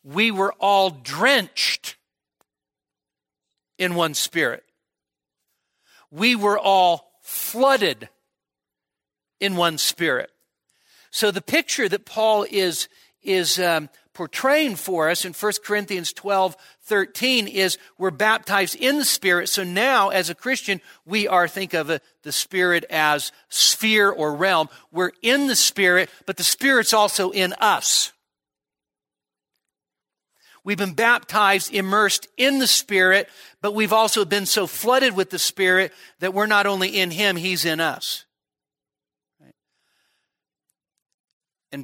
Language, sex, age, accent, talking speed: English, male, 50-69, American, 125 wpm